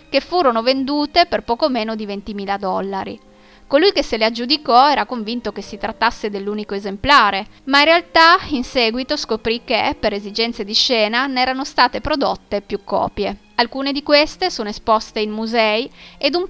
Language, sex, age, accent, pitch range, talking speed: Italian, female, 20-39, native, 210-265 Hz, 170 wpm